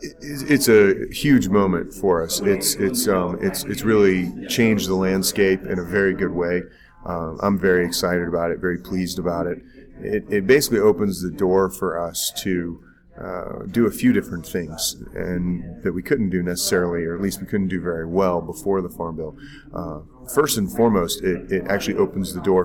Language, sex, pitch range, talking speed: English, male, 90-100 Hz, 195 wpm